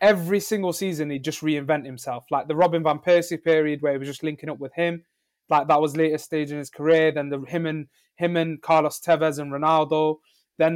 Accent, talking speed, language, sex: British, 225 wpm, English, male